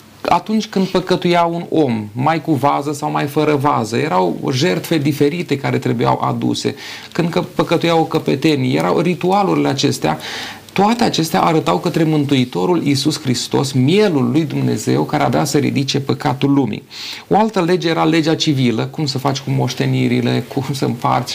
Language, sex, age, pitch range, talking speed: Romanian, male, 30-49, 130-160 Hz, 155 wpm